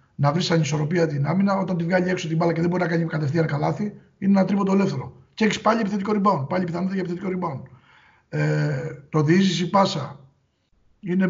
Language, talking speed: Greek, 200 wpm